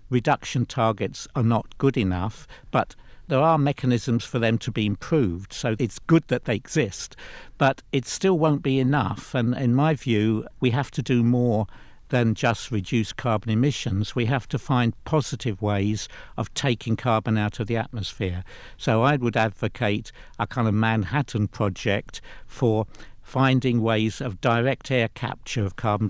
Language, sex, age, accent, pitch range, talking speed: English, male, 60-79, British, 105-130 Hz, 165 wpm